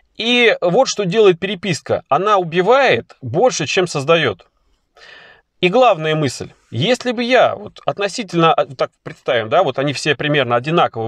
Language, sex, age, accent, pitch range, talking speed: Russian, male, 30-49, native, 140-195 Hz, 135 wpm